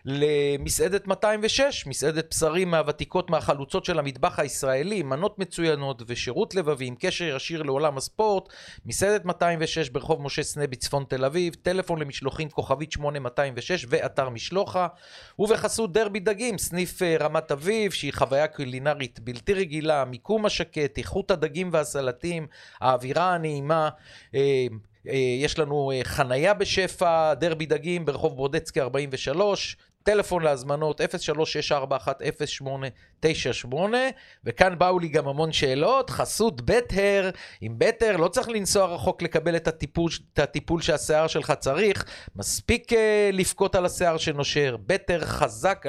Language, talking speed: Hebrew, 120 wpm